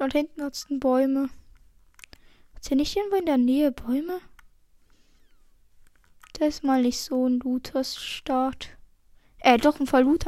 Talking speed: 140 wpm